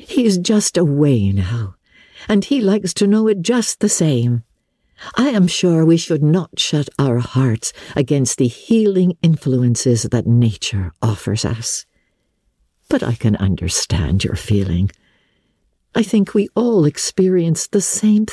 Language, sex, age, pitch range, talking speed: English, female, 60-79, 135-200 Hz, 145 wpm